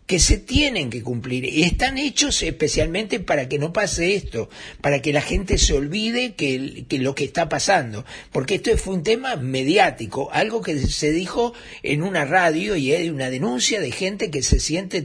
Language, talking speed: Spanish, 195 wpm